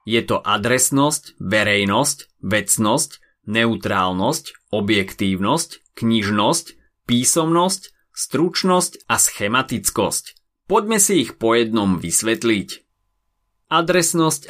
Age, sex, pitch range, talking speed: 30-49, male, 100-135 Hz, 80 wpm